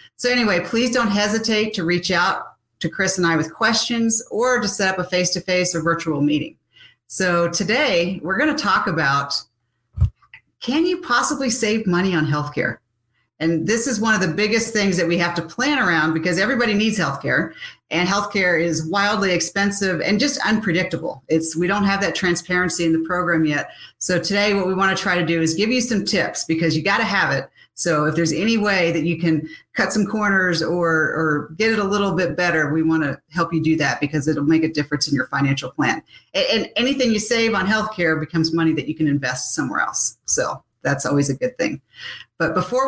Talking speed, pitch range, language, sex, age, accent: 210 wpm, 160-205 Hz, English, female, 40-59, American